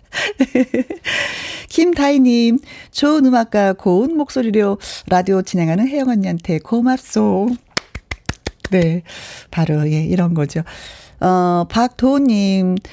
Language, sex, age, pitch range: Korean, female, 40-59, 175-260 Hz